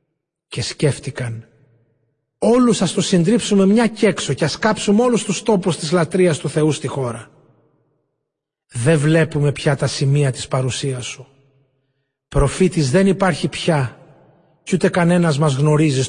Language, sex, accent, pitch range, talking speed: Greek, male, native, 140-175 Hz, 140 wpm